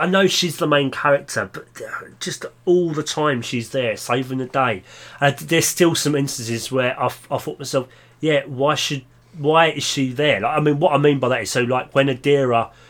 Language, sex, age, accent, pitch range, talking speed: English, male, 30-49, British, 130-175 Hz, 220 wpm